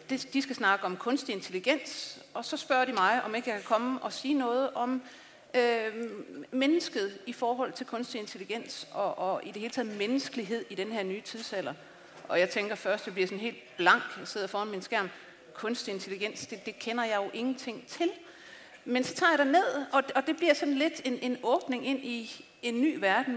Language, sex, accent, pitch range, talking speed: English, female, Danish, 205-270 Hz, 210 wpm